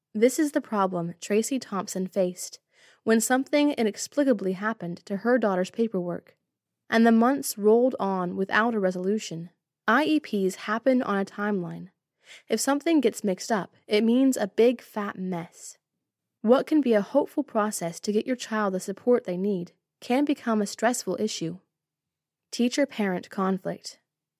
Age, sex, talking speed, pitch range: 20-39, female, 150 wpm, 185-245 Hz